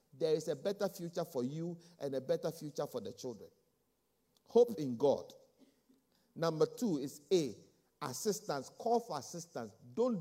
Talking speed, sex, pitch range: 155 wpm, male, 140-195 Hz